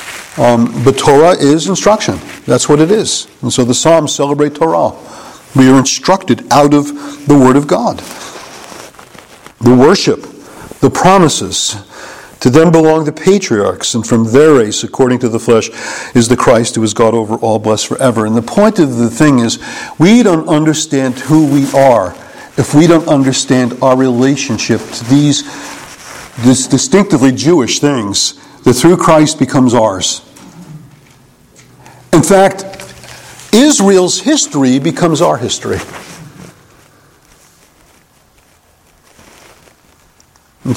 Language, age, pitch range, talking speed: English, 50-69, 125-165 Hz, 130 wpm